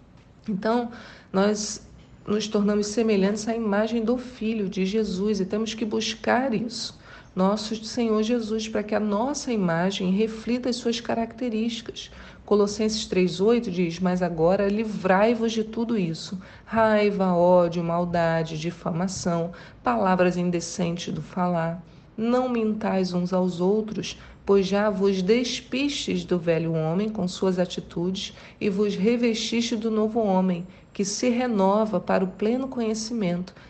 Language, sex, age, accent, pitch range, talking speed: Portuguese, female, 40-59, Brazilian, 185-230 Hz, 130 wpm